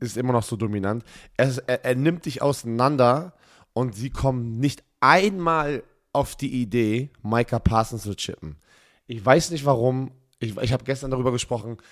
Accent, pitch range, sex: German, 110-135 Hz, male